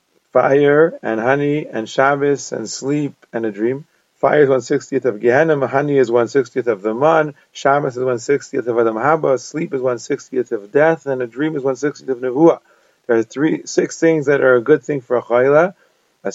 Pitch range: 130-155 Hz